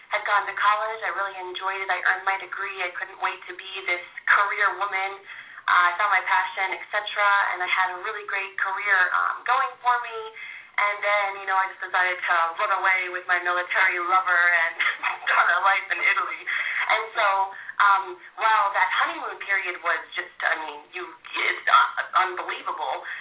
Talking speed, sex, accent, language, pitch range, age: 185 wpm, female, American, English, 175-200 Hz, 30-49